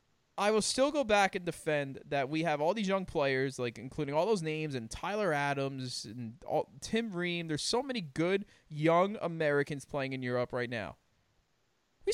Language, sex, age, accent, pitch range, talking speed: English, male, 20-39, American, 130-205 Hz, 190 wpm